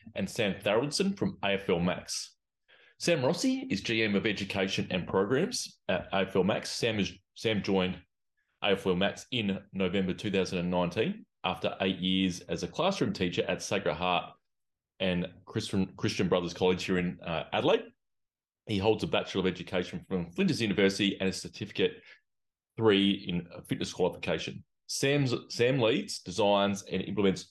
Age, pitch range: 30-49, 90-110 Hz